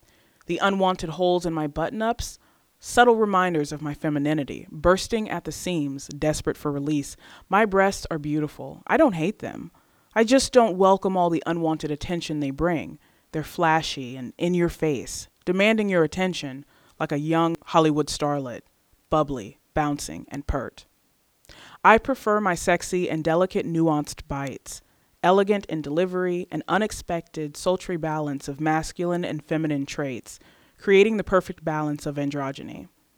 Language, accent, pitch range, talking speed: English, American, 155-190 Hz, 140 wpm